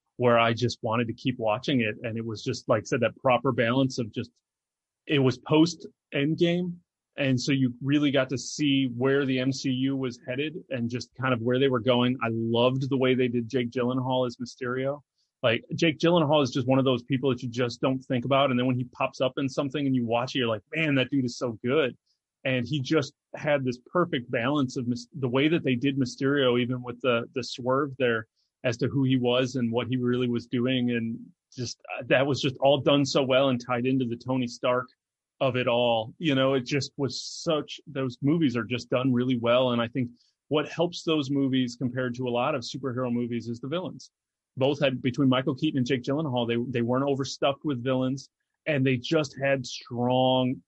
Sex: male